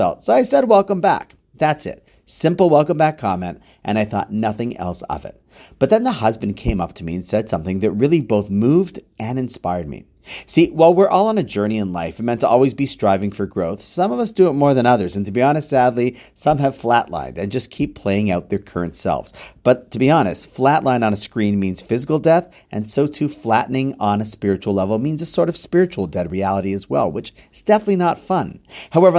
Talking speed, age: 230 wpm, 40-59